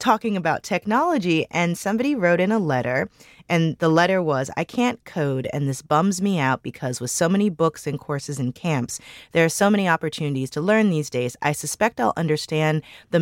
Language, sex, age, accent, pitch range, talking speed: English, female, 30-49, American, 145-205 Hz, 200 wpm